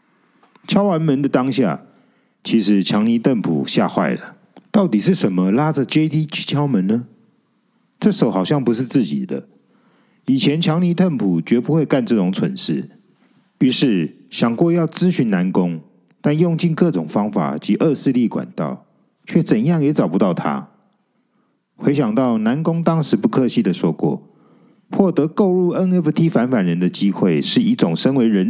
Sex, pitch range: male, 135-205 Hz